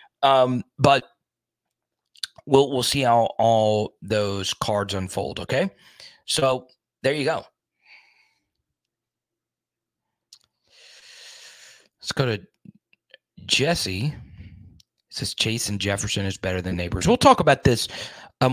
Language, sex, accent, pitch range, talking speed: English, male, American, 100-125 Hz, 105 wpm